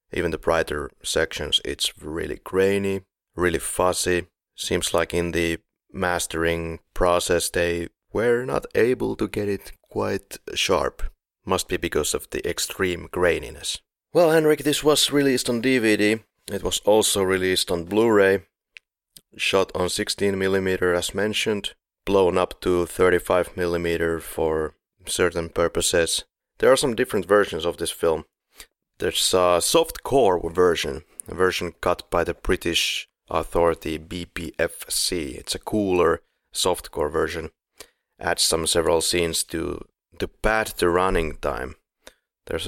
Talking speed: 130 wpm